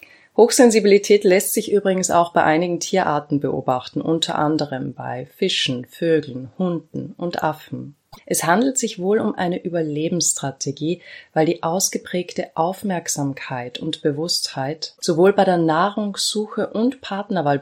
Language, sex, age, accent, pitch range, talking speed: German, female, 30-49, German, 150-190 Hz, 125 wpm